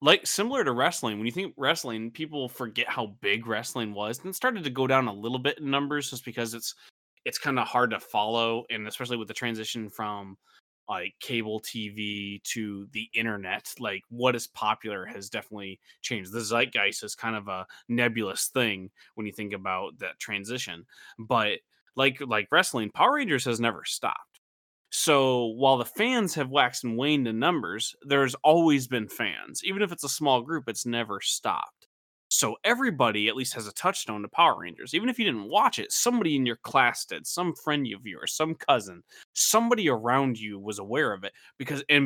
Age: 20-39